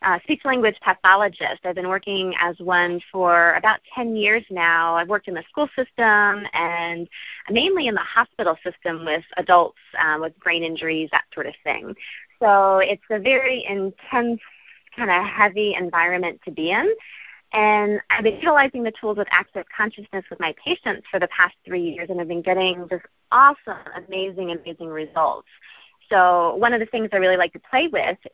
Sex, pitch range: female, 175-220 Hz